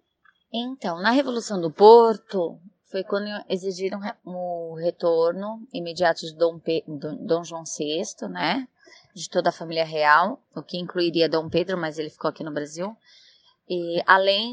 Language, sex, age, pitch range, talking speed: Portuguese, female, 20-39, 165-210 Hz, 140 wpm